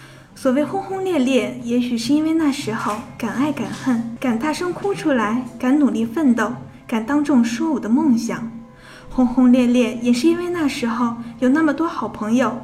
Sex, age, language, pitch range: female, 10-29, Chinese, 235-295 Hz